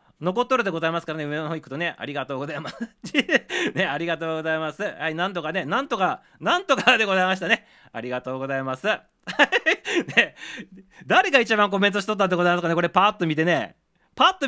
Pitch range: 165-230 Hz